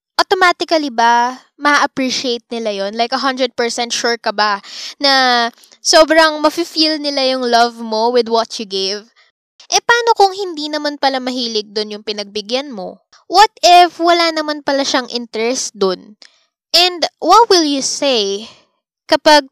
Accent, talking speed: native, 140 wpm